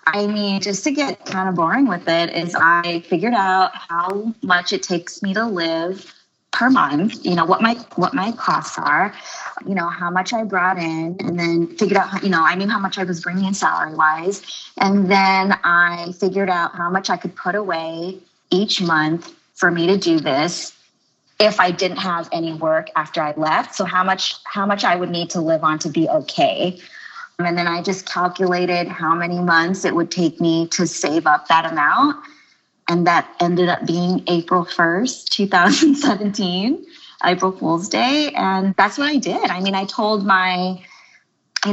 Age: 20-39